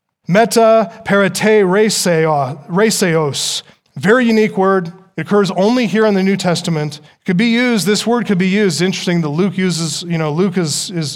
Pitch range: 170-210 Hz